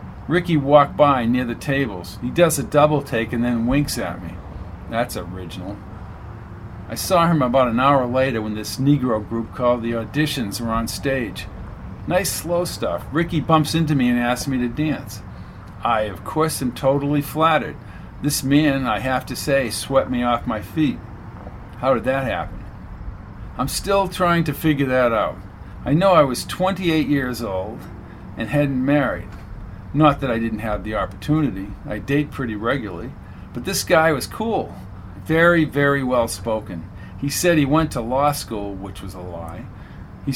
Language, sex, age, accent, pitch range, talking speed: English, male, 50-69, American, 105-145 Hz, 175 wpm